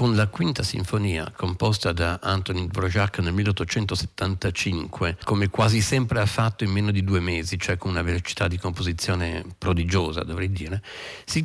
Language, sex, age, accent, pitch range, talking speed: Italian, male, 50-69, native, 90-110 Hz, 155 wpm